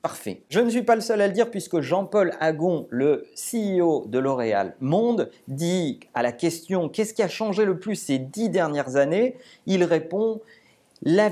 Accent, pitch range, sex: French, 165-225 Hz, male